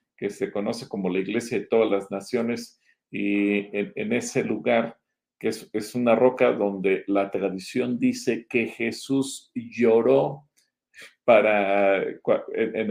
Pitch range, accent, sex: 100-130 Hz, Mexican, male